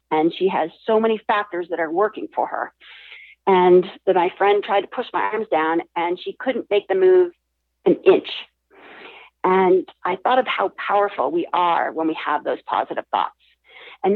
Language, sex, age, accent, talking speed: English, female, 40-59, American, 185 wpm